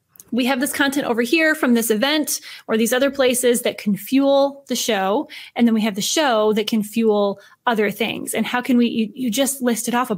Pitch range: 215-260 Hz